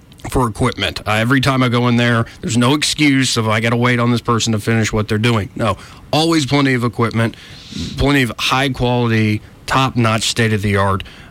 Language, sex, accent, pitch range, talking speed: English, male, American, 105-130 Hz, 185 wpm